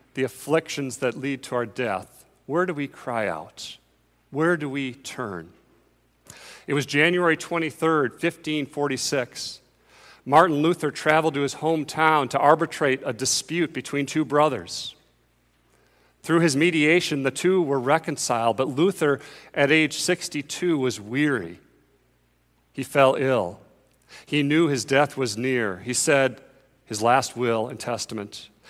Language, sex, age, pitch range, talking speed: English, male, 40-59, 115-155 Hz, 135 wpm